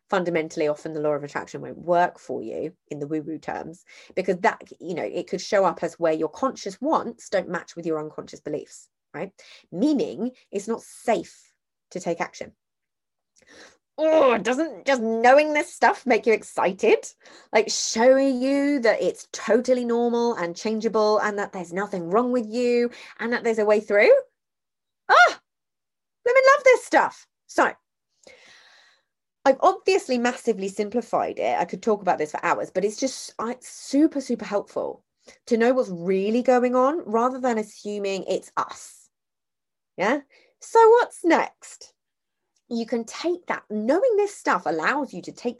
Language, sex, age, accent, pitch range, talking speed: English, female, 20-39, British, 195-270 Hz, 165 wpm